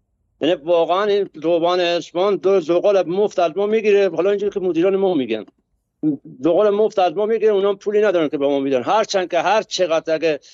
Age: 60-79